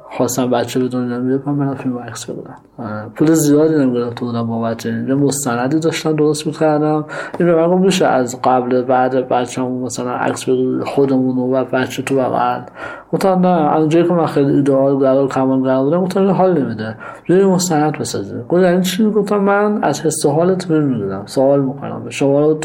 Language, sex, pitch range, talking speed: Persian, male, 125-165 Hz, 160 wpm